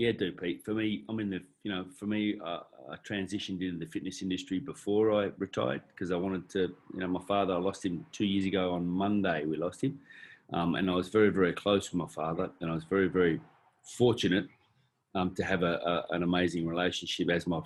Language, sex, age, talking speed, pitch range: English, male, 30-49, 230 wpm, 90-100 Hz